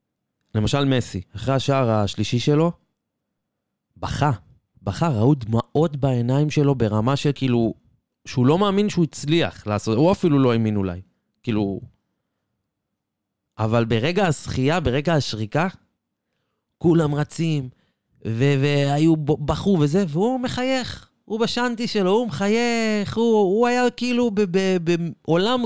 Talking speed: 120 wpm